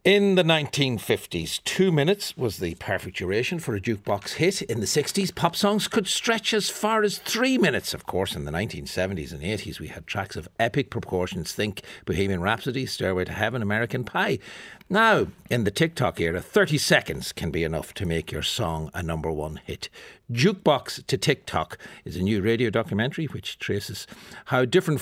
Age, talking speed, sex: 60-79, 180 wpm, male